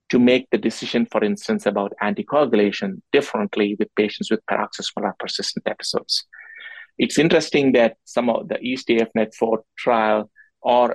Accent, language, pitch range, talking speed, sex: Indian, English, 110-130 Hz, 135 wpm, male